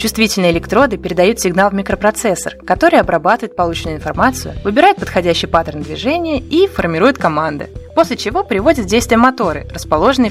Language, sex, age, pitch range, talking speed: Russian, female, 20-39, 165-235 Hz, 140 wpm